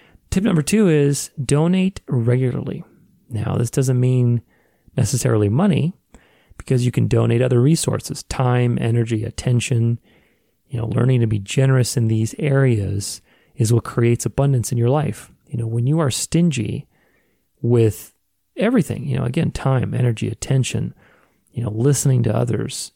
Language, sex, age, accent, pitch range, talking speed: English, male, 30-49, American, 115-145 Hz, 145 wpm